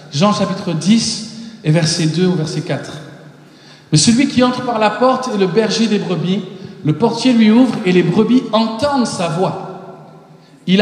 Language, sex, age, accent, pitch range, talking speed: French, male, 50-69, French, 160-210 Hz, 185 wpm